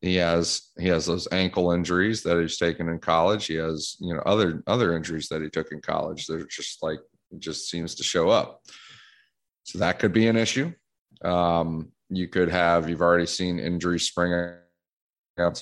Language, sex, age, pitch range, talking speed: English, male, 30-49, 80-90 Hz, 185 wpm